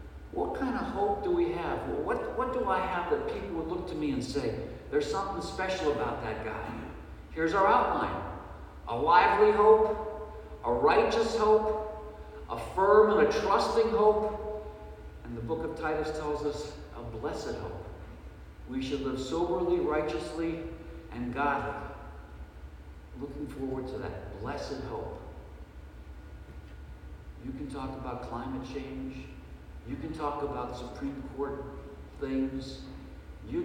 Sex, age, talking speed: male, 50-69, 140 wpm